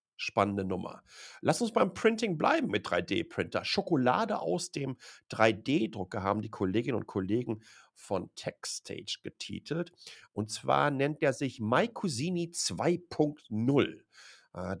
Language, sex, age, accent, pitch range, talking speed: German, male, 50-69, German, 105-150 Hz, 115 wpm